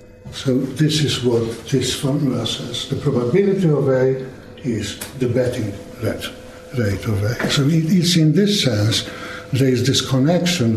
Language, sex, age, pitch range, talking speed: English, male, 60-79, 115-155 Hz, 145 wpm